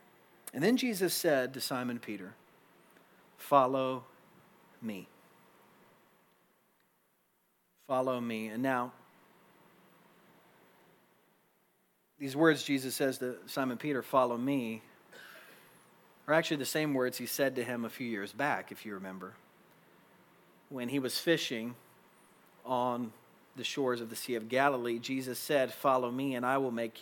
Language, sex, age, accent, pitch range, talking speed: English, male, 40-59, American, 130-175 Hz, 130 wpm